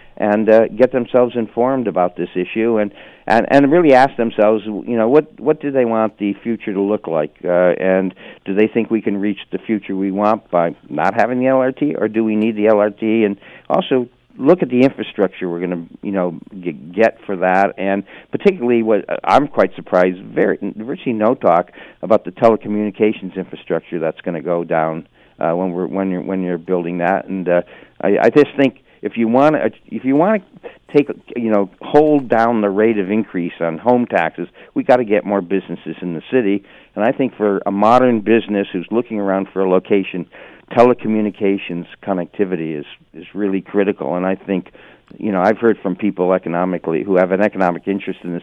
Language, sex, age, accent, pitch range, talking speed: English, male, 60-79, American, 90-115 Hz, 205 wpm